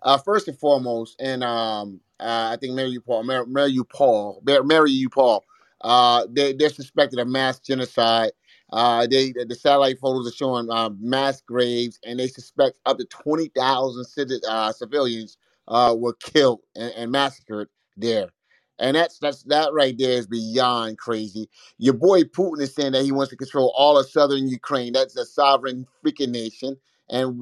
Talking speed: 175 wpm